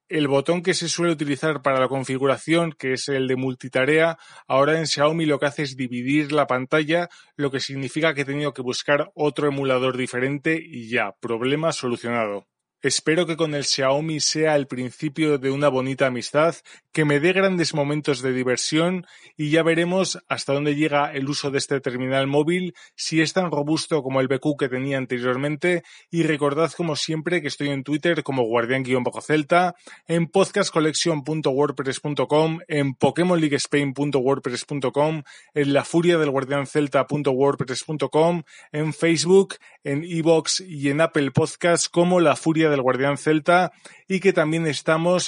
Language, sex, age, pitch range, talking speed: Spanish, male, 20-39, 135-165 Hz, 155 wpm